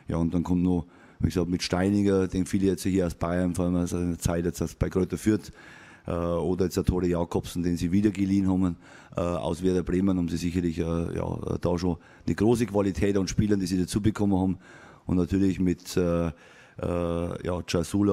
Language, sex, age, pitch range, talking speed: German, male, 30-49, 90-100 Hz, 200 wpm